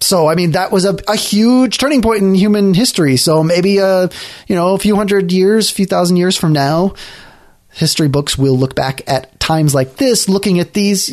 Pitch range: 135-190 Hz